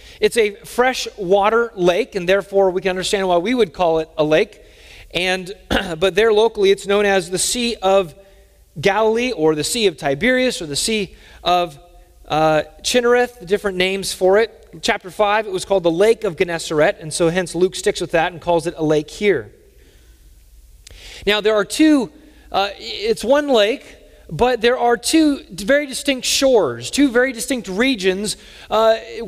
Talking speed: 180 wpm